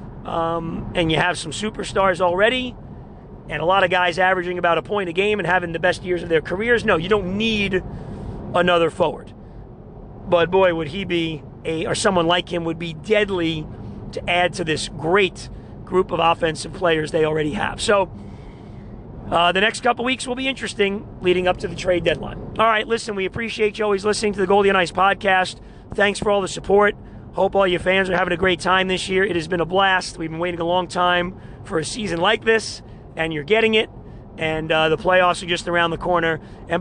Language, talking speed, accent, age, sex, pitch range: English, 215 wpm, American, 40-59, male, 165-195 Hz